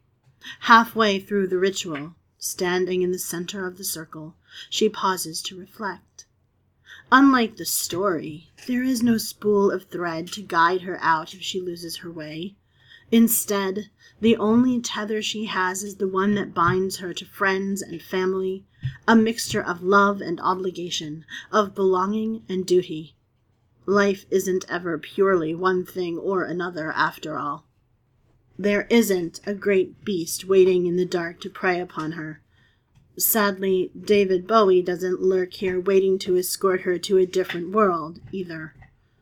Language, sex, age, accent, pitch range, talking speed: English, female, 30-49, American, 165-205 Hz, 150 wpm